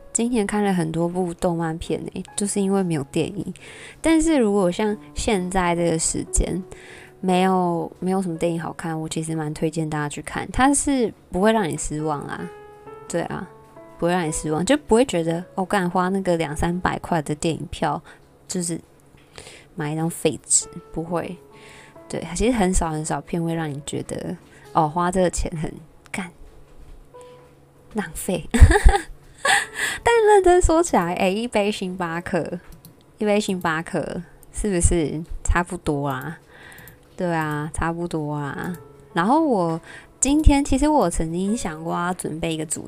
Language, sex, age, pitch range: Chinese, female, 20-39, 160-200 Hz